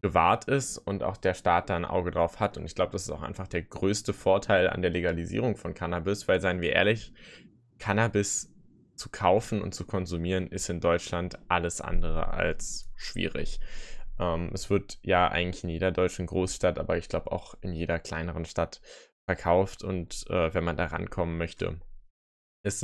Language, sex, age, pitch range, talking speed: German, male, 10-29, 90-105 Hz, 180 wpm